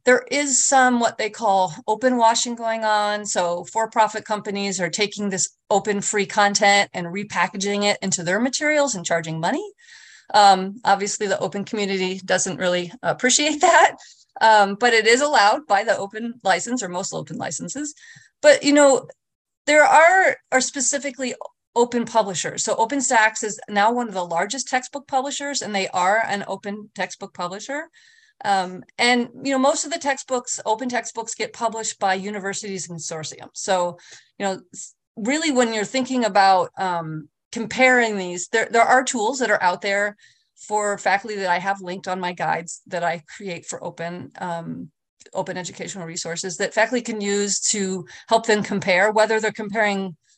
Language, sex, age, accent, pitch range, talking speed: English, female, 30-49, American, 190-250 Hz, 165 wpm